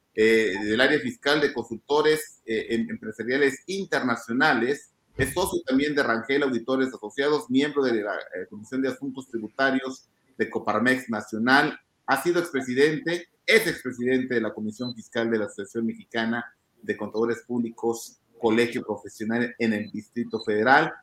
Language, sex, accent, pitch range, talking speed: Spanish, male, Mexican, 115-145 Hz, 140 wpm